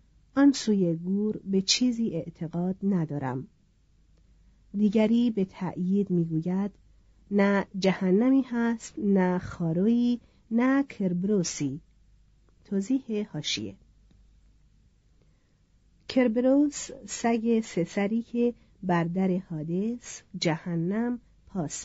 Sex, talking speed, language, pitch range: female, 75 wpm, Persian, 170-220 Hz